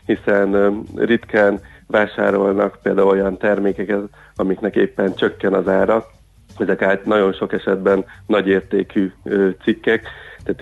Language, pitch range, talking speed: Hungarian, 100-110 Hz, 115 wpm